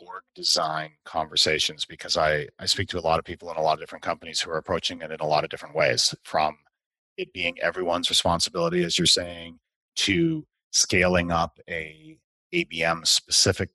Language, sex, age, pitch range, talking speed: English, male, 30-49, 90-115 Hz, 180 wpm